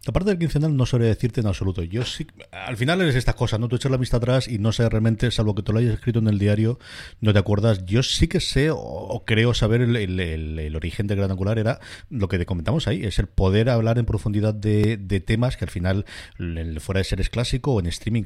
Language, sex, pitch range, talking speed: Spanish, male, 100-120 Hz, 265 wpm